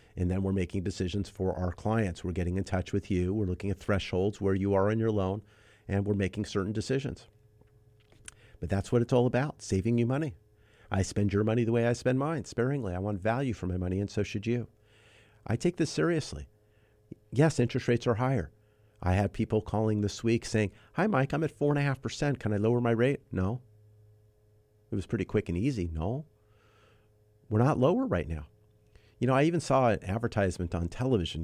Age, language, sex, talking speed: 50-69, English, male, 200 wpm